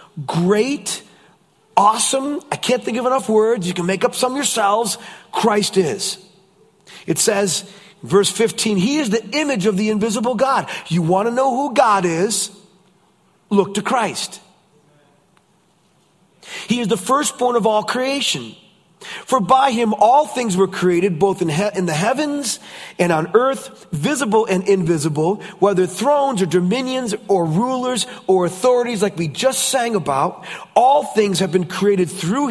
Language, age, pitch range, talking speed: English, 40-59, 190-245 Hz, 150 wpm